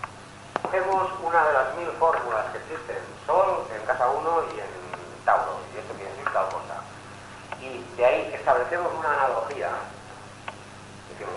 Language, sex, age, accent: Spanish, male, 40-59, Spanish